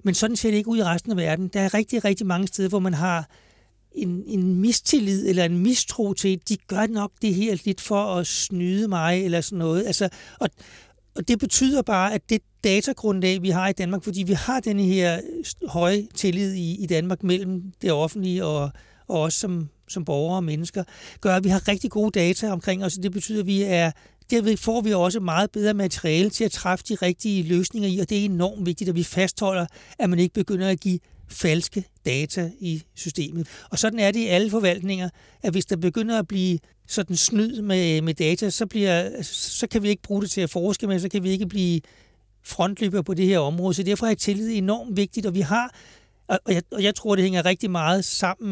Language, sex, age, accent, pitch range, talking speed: Danish, male, 60-79, native, 175-205 Hz, 225 wpm